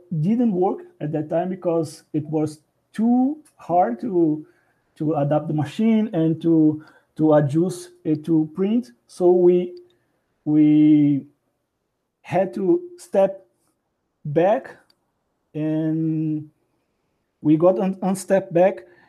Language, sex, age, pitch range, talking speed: English, male, 40-59, 160-195 Hz, 115 wpm